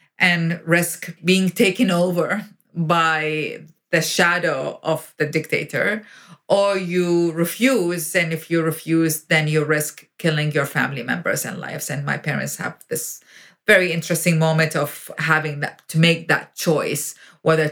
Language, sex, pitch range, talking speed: English, female, 160-195 Hz, 140 wpm